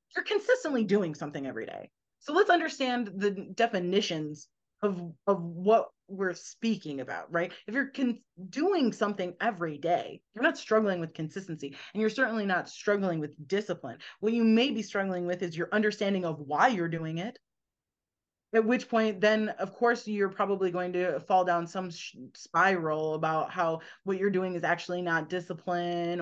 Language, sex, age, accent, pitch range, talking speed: English, female, 30-49, American, 170-210 Hz, 170 wpm